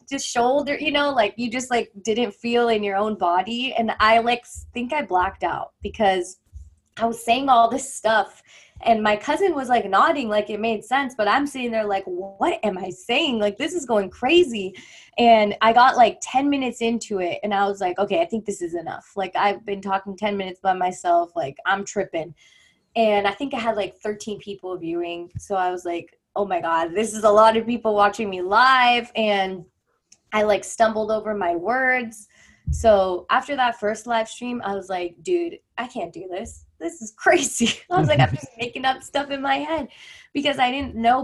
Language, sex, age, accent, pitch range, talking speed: English, female, 20-39, American, 185-240 Hz, 210 wpm